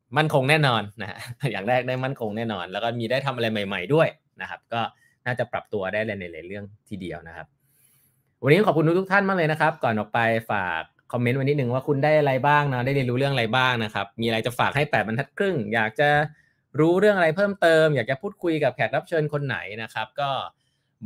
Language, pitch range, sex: Thai, 110-145 Hz, male